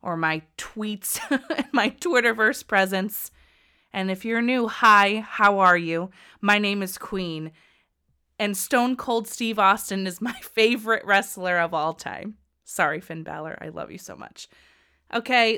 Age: 20-39